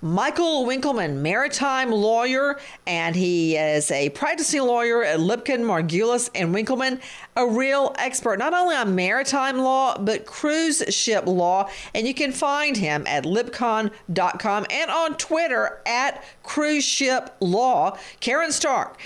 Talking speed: 135 wpm